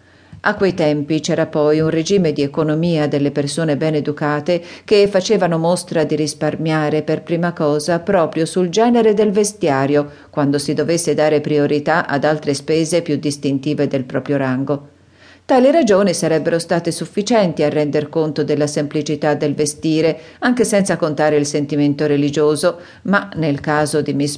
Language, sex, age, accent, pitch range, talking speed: Italian, female, 40-59, native, 150-185 Hz, 155 wpm